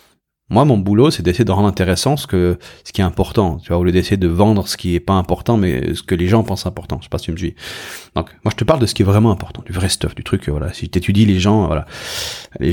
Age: 40-59